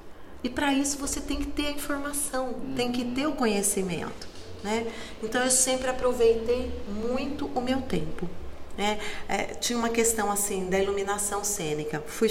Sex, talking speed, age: female, 160 wpm, 30-49